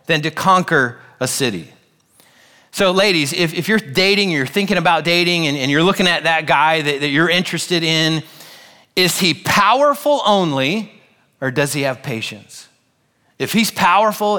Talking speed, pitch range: 165 wpm, 120-165 Hz